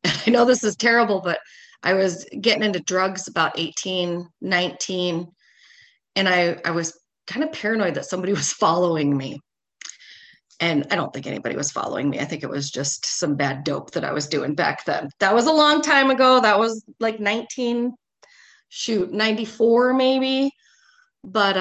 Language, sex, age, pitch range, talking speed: English, female, 30-49, 165-230 Hz, 170 wpm